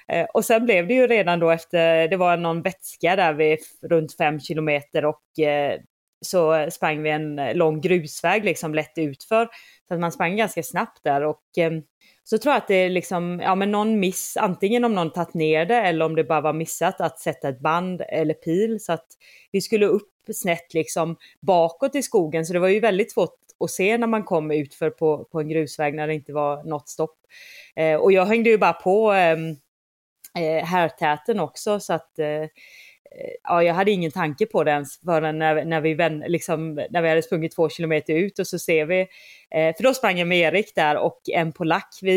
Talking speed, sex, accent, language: 205 wpm, female, native, Swedish